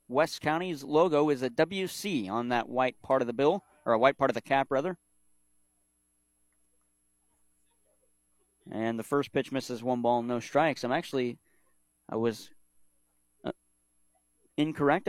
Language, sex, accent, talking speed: English, male, American, 145 wpm